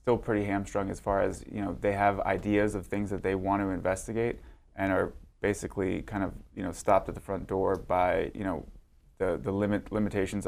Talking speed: 210 wpm